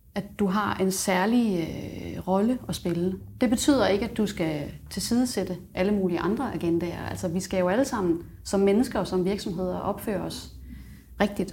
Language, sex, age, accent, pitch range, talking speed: Danish, female, 30-49, native, 175-210 Hz, 175 wpm